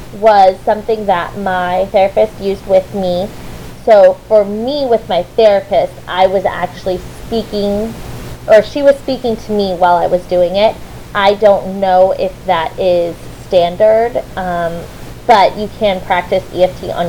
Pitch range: 175-215 Hz